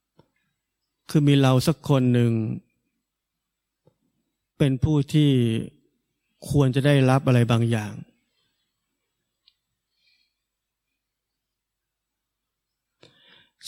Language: Thai